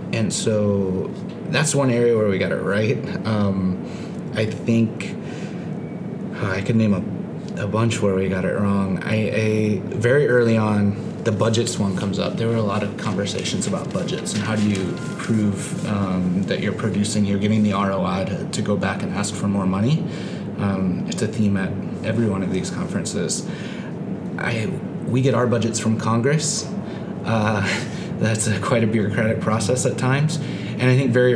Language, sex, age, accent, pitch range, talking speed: English, male, 30-49, American, 105-120 Hz, 180 wpm